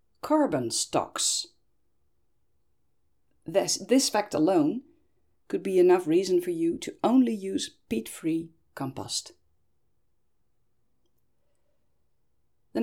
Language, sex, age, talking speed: Dutch, female, 40-59, 85 wpm